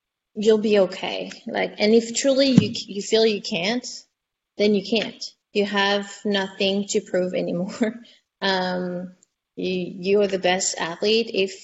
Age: 30-49